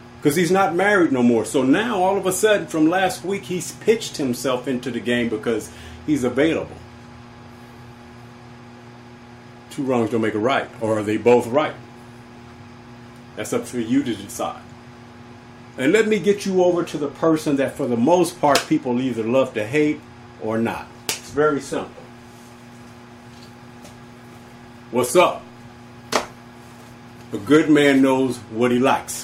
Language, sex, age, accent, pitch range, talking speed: English, male, 50-69, American, 120-140 Hz, 150 wpm